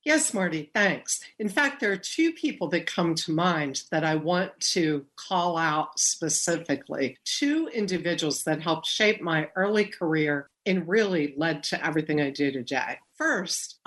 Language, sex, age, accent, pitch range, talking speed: English, female, 50-69, American, 150-205 Hz, 160 wpm